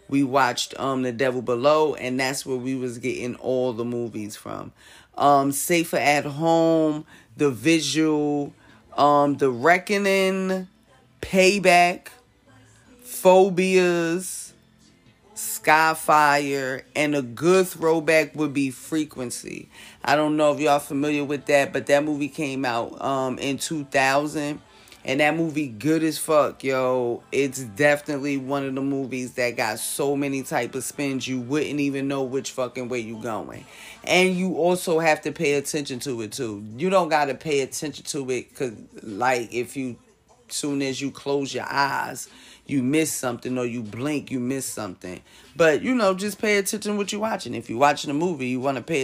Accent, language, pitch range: American, English, 130-165 Hz